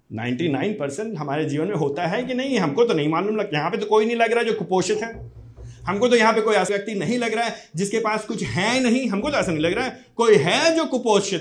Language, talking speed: Hindi, 240 wpm